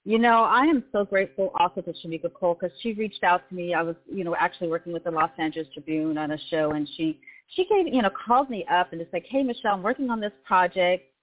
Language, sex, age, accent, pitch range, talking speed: English, female, 40-59, American, 170-220 Hz, 260 wpm